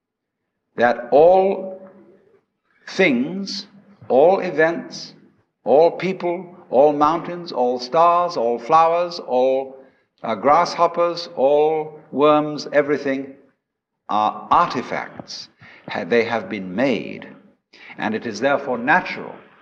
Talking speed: 90 wpm